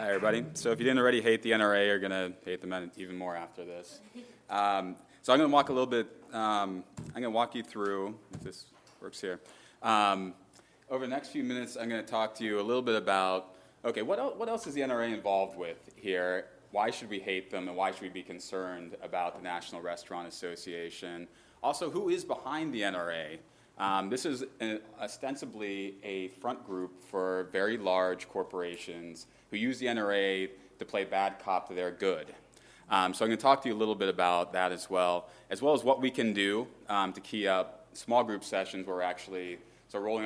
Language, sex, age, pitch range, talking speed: English, male, 20-39, 90-115 Hz, 215 wpm